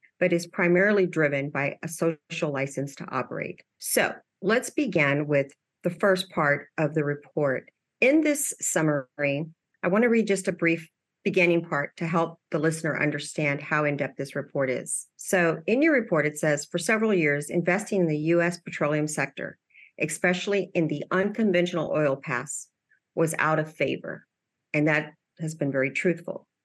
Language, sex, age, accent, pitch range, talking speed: English, female, 50-69, American, 150-180 Hz, 160 wpm